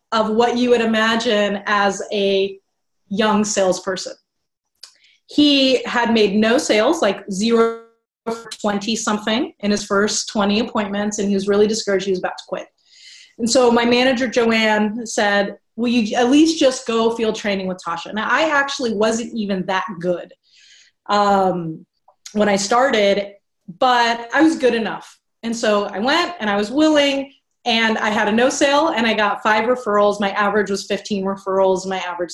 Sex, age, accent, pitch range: female, 30-49, American, 200-245 Hz